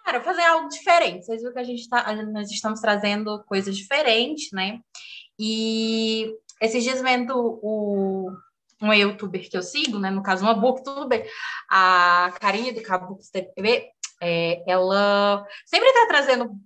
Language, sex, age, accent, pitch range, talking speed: Portuguese, female, 20-39, Brazilian, 210-280 Hz, 150 wpm